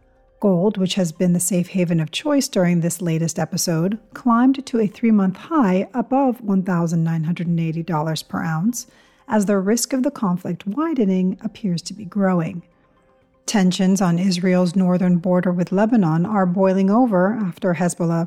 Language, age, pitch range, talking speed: English, 40-59, 175-225 Hz, 150 wpm